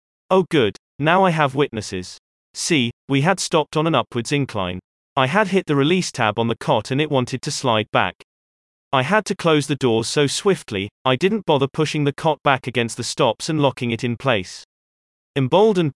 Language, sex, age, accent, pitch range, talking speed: English, male, 30-49, British, 115-155 Hz, 200 wpm